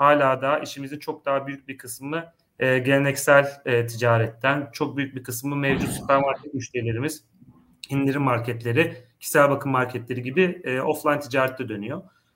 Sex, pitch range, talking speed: male, 125-150 Hz, 125 wpm